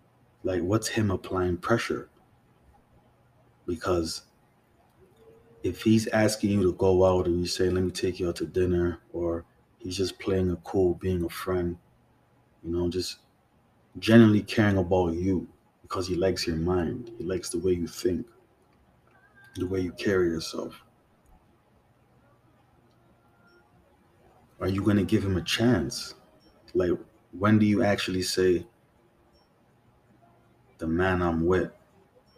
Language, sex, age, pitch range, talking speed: English, male, 30-49, 85-105 Hz, 135 wpm